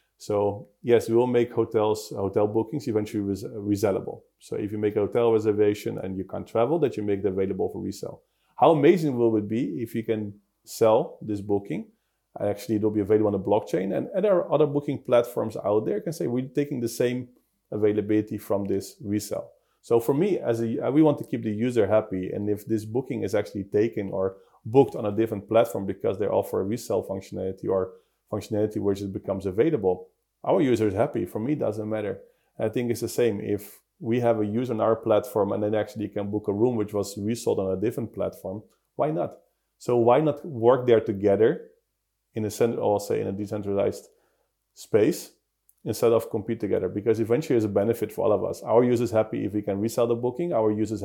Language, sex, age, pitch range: English, male, 30-49, 105-120 Hz